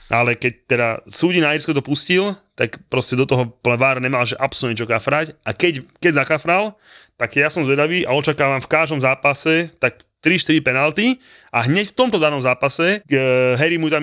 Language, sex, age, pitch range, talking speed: Slovak, male, 20-39, 120-150 Hz, 180 wpm